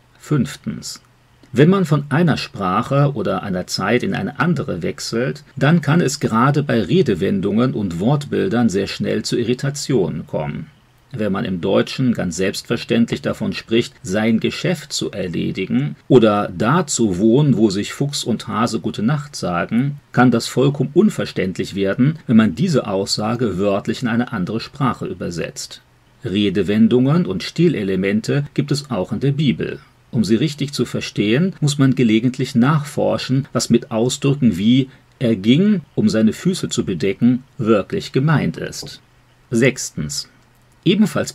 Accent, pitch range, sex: German, 115-145 Hz, male